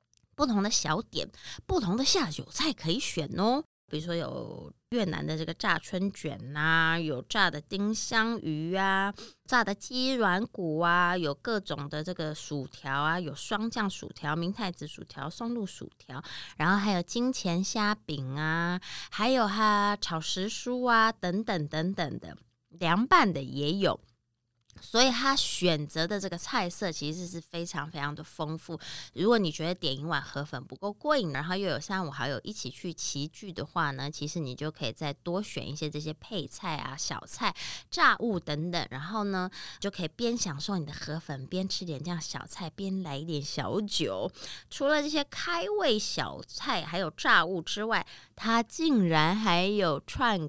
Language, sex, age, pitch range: Chinese, female, 20-39, 150-210 Hz